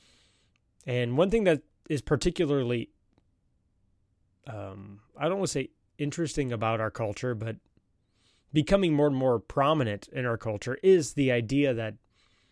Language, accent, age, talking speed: English, American, 30-49, 140 wpm